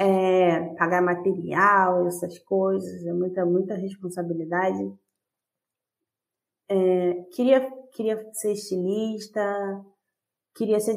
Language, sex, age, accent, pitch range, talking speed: Portuguese, female, 20-39, Brazilian, 175-205 Hz, 75 wpm